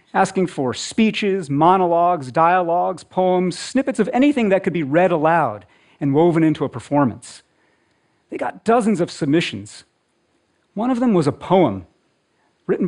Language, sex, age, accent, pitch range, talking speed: Russian, male, 40-59, American, 125-180 Hz, 145 wpm